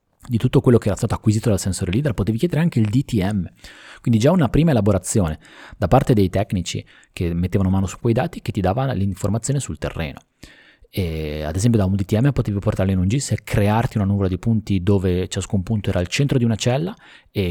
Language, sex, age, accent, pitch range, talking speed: Italian, male, 30-49, native, 90-115 Hz, 215 wpm